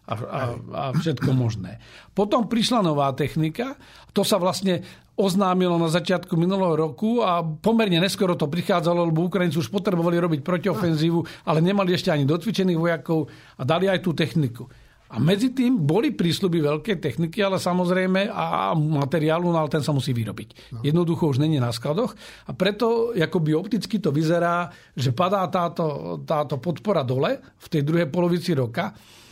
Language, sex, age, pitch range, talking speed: Slovak, male, 50-69, 145-180 Hz, 155 wpm